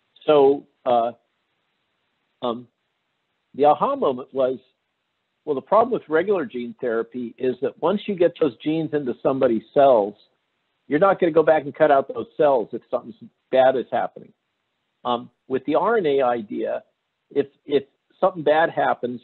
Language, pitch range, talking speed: English, 120-140 Hz, 155 wpm